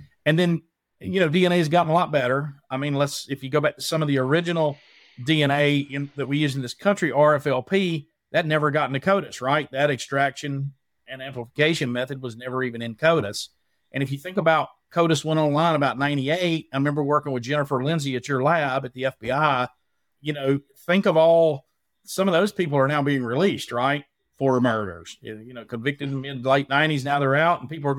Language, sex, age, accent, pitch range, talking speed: English, male, 40-59, American, 135-165 Hz, 210 wpm